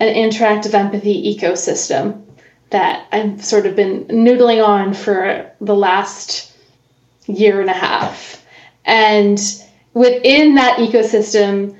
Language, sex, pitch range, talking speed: English, female, 200-225 Hz, 110 wpm